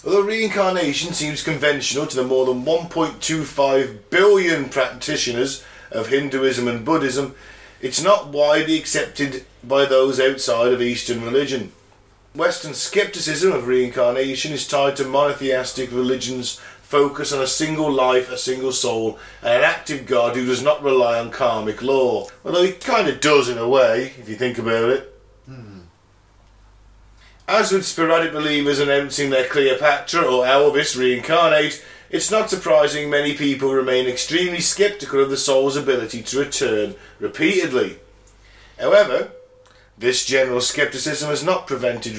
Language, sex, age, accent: English, male, 40-59, British